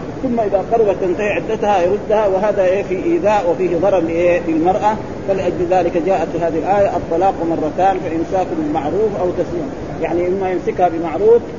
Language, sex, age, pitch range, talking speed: Arabic, male, 30-49, 170-200 Hz, 150 wpm